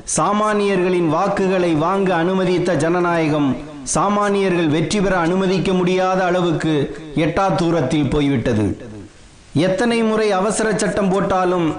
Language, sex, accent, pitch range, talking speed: Tamil, male, native, 160-195 Hz, 95 wpm